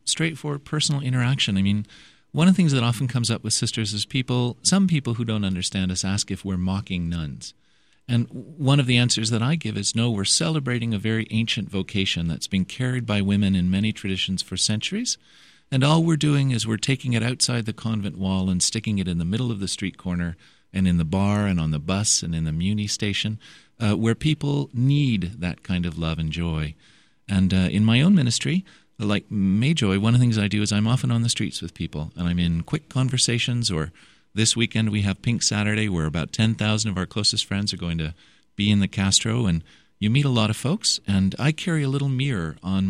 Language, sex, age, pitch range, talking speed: English, male, 40-59, 95-125 Hz, 225 wpm